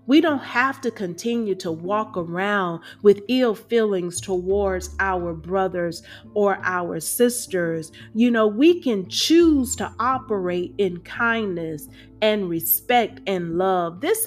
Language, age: English, 40-59